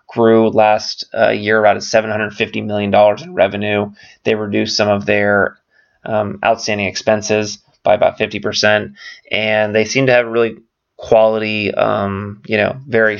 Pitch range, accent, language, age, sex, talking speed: 105-120 Hz, American, English, 20-39, male, 145 wpm